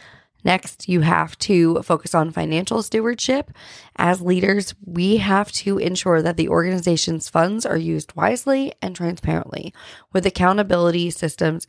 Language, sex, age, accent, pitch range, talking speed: English, female, 20-39, American, 155-180 Hz, 135 wpm